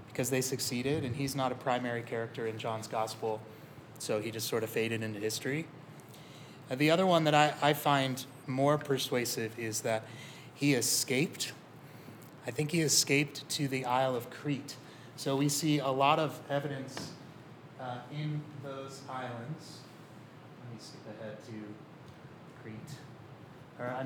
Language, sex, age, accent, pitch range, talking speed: English, male, 30-49, American, 125-150 Hz, 155 wpm